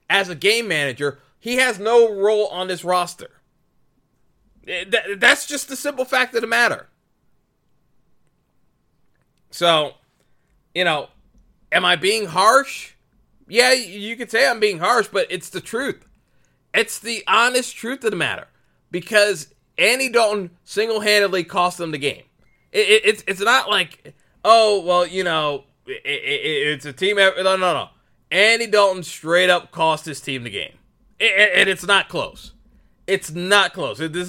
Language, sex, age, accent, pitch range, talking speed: English, male, 30-49, American, 155-210 Hz, 145 wpm